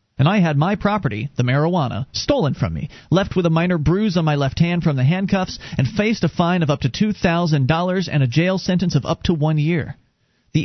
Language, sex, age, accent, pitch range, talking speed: English, male, 40-59, American, 130-175 Hz, 225 wpm